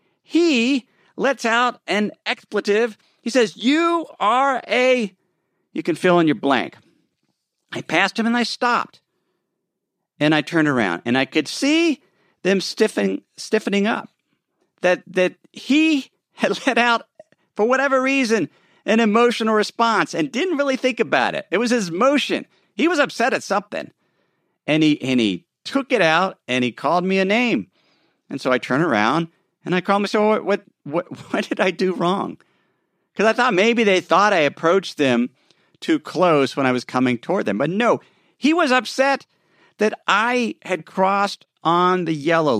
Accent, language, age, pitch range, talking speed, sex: American, English, 50-69, 165-245 Hz, 170 wpm, male